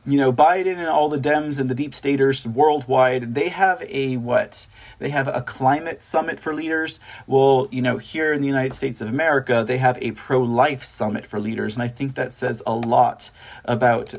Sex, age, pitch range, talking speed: male, 30-49, 125-145 Hz, 205 wpm